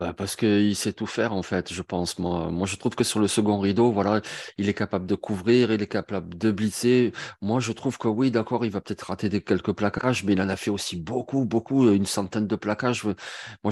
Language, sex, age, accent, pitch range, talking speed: French, male, 30-49, French, 105-125 Hz, 240 wpm